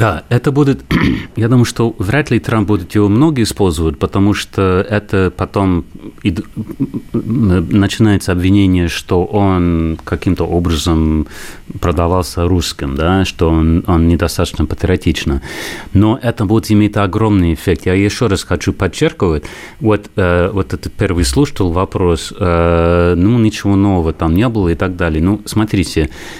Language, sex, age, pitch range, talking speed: Russian, male, 30-49, 85-105 Hz, 140 wpm